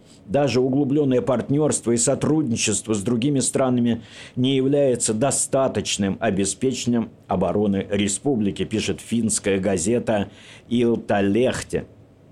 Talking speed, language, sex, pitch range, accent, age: 90 wpm, Russian, male, 115-145 Hz, native, 50-69